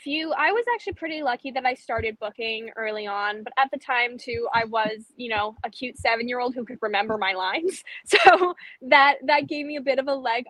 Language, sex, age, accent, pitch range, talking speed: English, female, 10-29, American, 210-265 Hz, 235 wpm